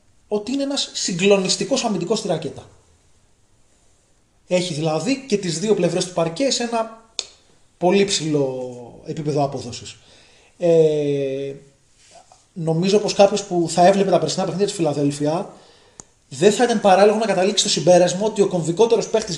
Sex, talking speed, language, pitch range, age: male, 140 wpm, Greek, 140-205 Hz, 20-39